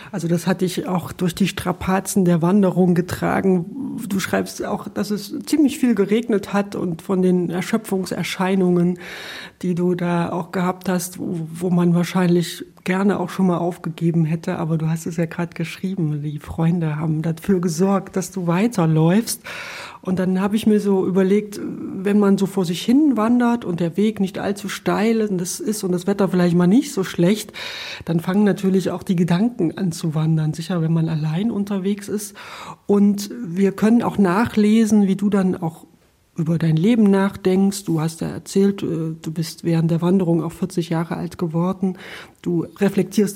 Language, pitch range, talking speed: German, 170-205 Hz, 180 wpm